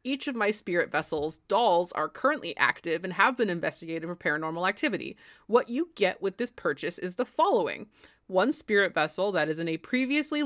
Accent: American